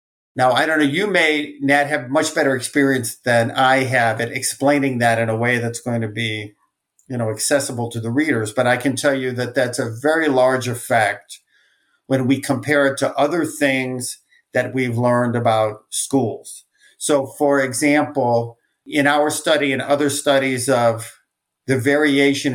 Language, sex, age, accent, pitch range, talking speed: English, male, 50-69, American, 120-145 Hz, 175 wpm